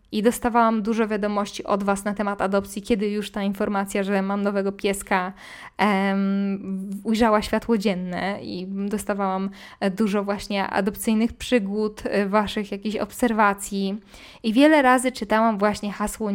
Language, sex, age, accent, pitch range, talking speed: Polish, female, 20-39, native, 205-240 Hz, 130 wpm